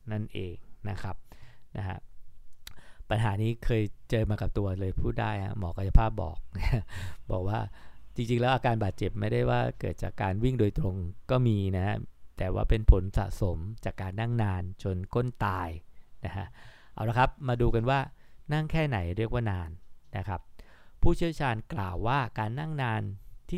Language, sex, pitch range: English, male, 95-125 Hz